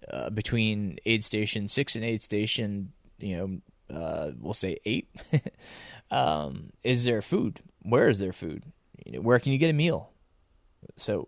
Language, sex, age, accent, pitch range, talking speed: English, male, 20-39, American, 105-125 Hz, 165 wpm